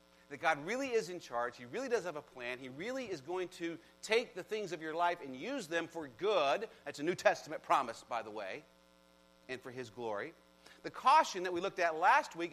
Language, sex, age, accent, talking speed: English, male, 40-59, American, 230 wpm